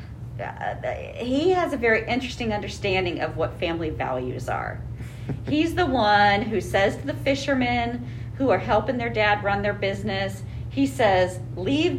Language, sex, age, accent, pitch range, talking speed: English, female, 40-59, American, 115-145 Hz, 155 wpm